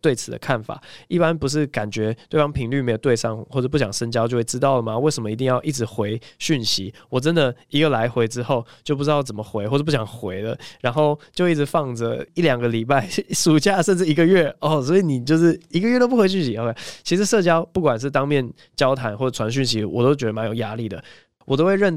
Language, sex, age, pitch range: Chinese, male, 20-39, 115-155 Hz